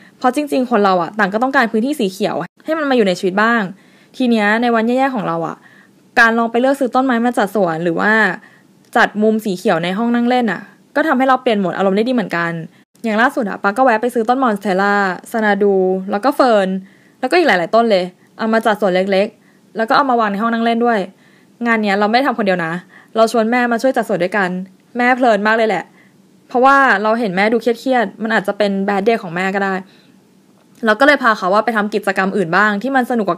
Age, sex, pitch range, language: 20-39, female, 195-245 Hz, Thai